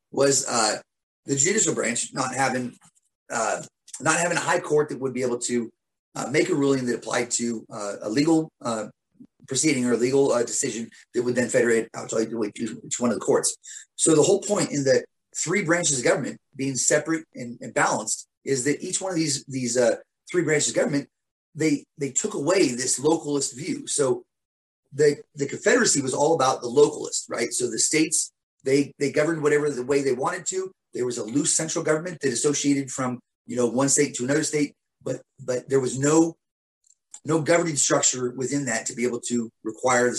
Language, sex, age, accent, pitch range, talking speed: English, male, 30-49, American, 125-165 Hz, 200 wpm